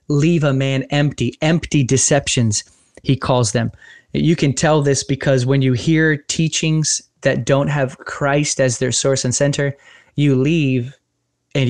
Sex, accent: male, American